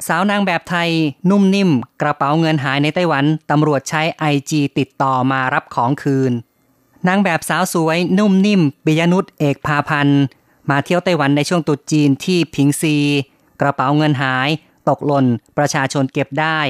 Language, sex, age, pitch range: Thai, female, 30-49, 140-160 Hz